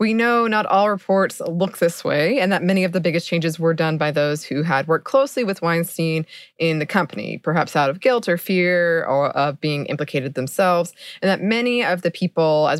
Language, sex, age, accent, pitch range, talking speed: English, female, 20-39, American, 155-190 Hz, 215 wpm